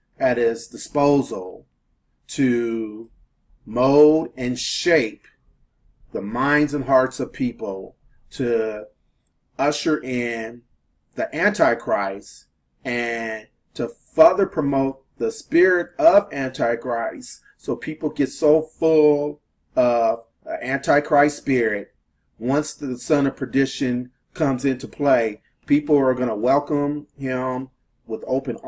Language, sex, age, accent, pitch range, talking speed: English, male, 40-59, American, 115-140 Hz, 105 wpm